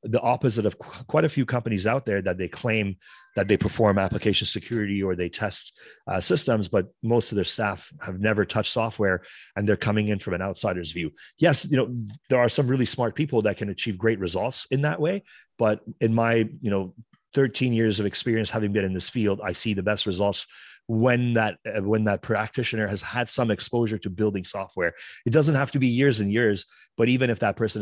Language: English